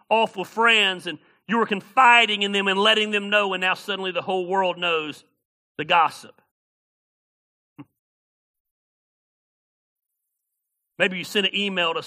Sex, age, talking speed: male, 40-59, 135 wpm